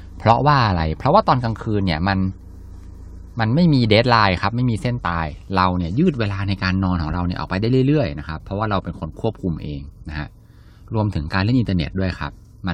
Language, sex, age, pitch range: Thai, male, 20-39, 85-110 Hz